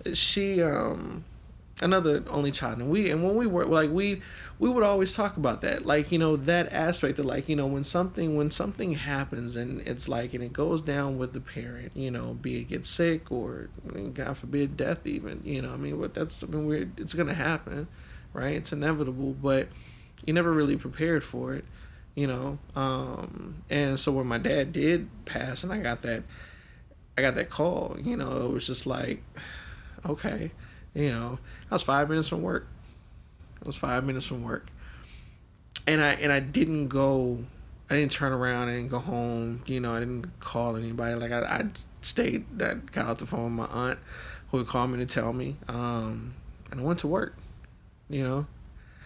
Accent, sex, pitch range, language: American, male, 120-155 Hz, English